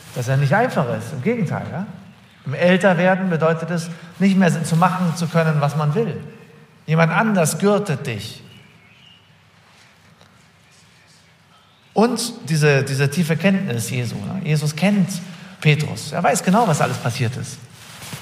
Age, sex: 50-69, male